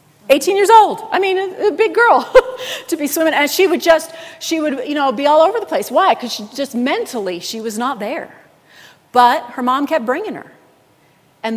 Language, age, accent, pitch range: English, 40-59, American, 195-255 Hz